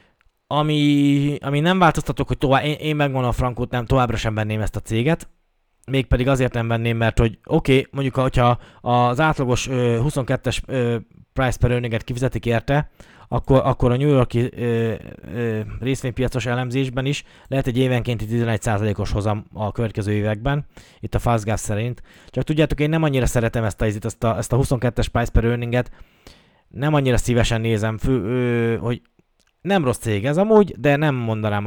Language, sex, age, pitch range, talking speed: Hungarian, male, 20-39, 110-140 Hz, 170 wpm